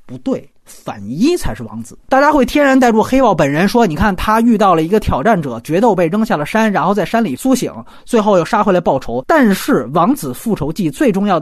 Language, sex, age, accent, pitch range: Chinese, male, 30-49, native, 175-260 Hz